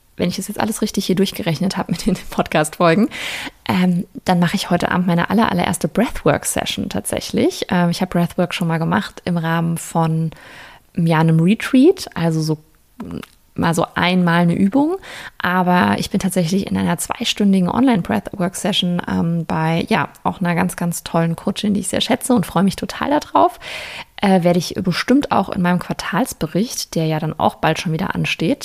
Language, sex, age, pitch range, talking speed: German, female, 20-39, 175-210 Hz, 175 wpm